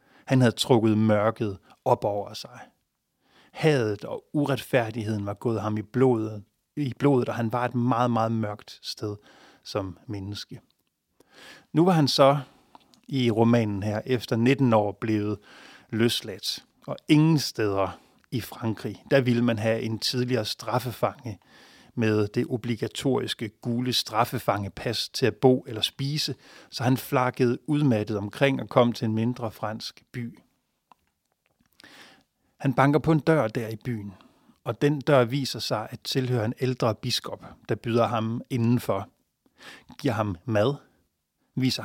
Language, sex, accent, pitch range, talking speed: English, male, Danish, 110-135 Hz, 140 wpm